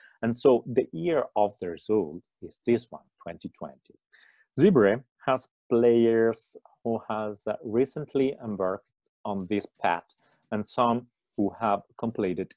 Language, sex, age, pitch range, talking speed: English, male, 40-59, 100-120 Hz, 125 wpm